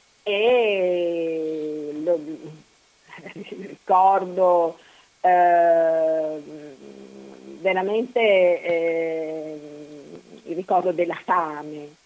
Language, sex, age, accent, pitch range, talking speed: Italian, female, 50-69, native, 170-235 Hz, 55 wpm